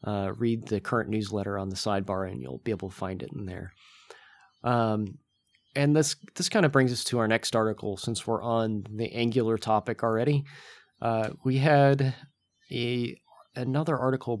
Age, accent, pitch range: 30-49, American, 100-120 Hz